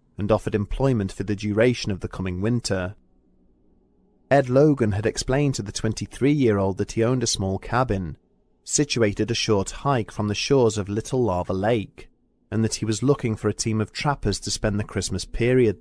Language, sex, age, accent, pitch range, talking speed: English, male, 30-49, British, 100-130 Hz, 185 wpm